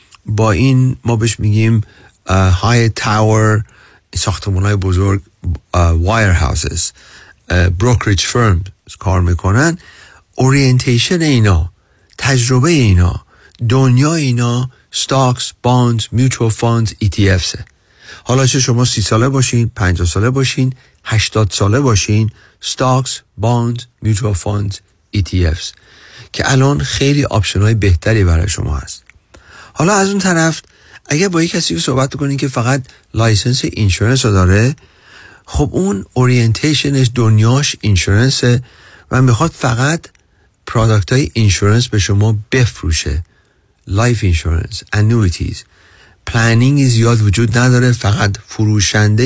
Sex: male